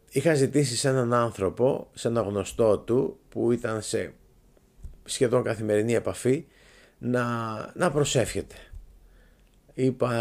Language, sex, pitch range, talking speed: Greek, male, 100-130 Hz, 110 wpm